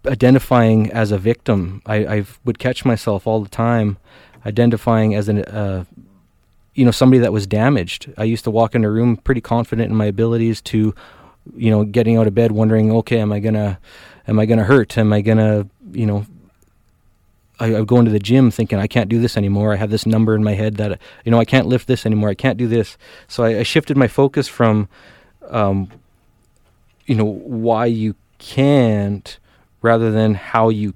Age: 20-39